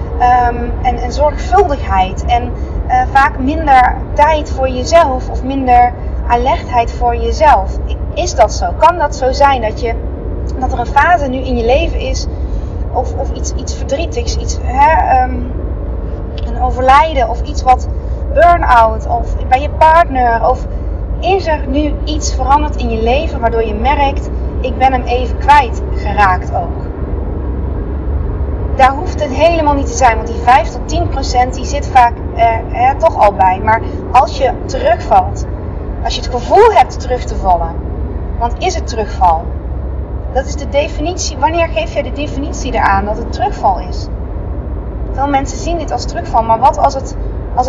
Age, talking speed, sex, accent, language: 20-39, 160 wpm, female, Dutch, Dutch